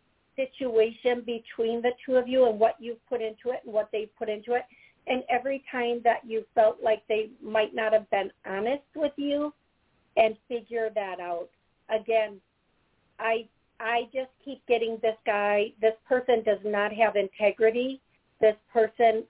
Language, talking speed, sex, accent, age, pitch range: English, 165 wpm, female, American, 50-69, 210-245 Hz